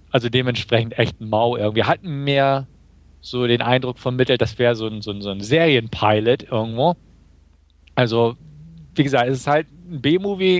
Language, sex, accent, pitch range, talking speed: German, male, German, 115-145 Hz, 155 wpm